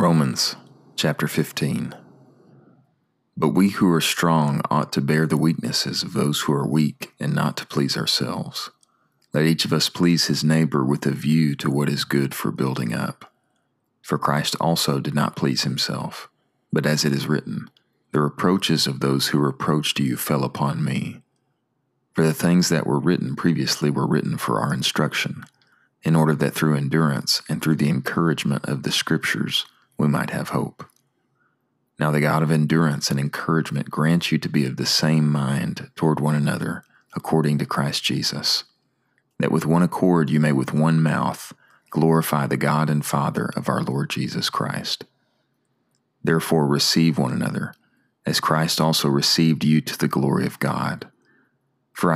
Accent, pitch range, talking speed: American, 70-80 Hz, 170 wpm